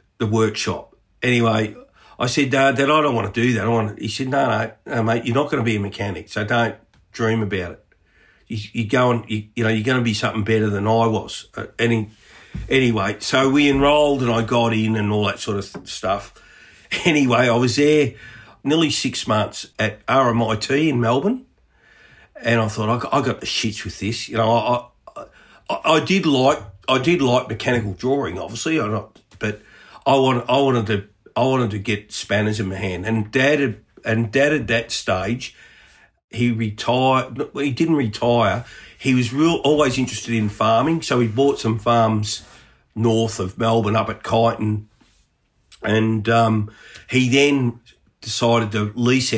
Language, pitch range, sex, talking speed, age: English, 110-125 Hz, male, 185 wpm, 50-69